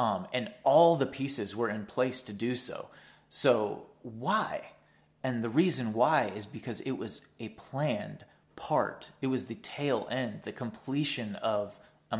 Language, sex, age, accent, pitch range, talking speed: English, male, 30-49, American, 110-140 Hz, 160 wpm